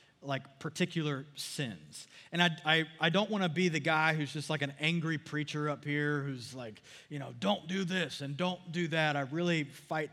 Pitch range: 135-170 Hz